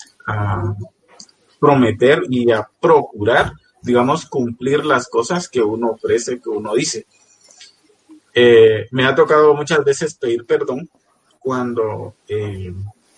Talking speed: 110 wpm